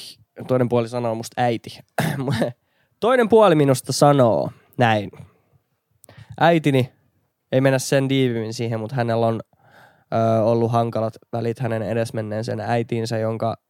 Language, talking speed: Finnish, 115 wpm